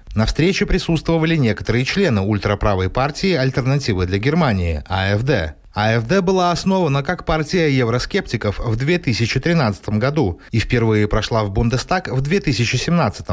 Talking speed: 120 wpm